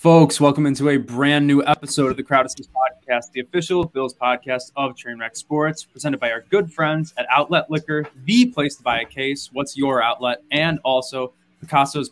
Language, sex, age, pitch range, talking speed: English, male, 20-39, 130-155 Hz, 190 wpm